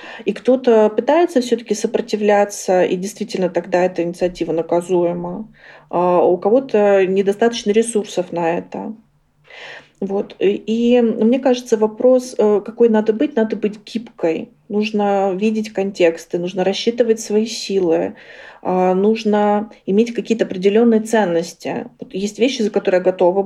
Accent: native